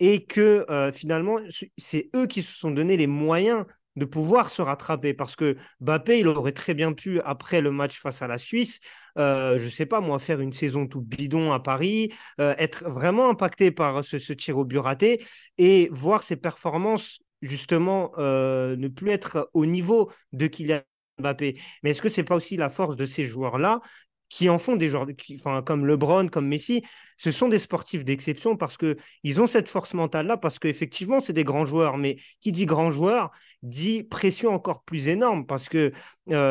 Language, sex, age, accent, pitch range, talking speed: French, male, 30-49, French, 145-180 Hz, 200 wpm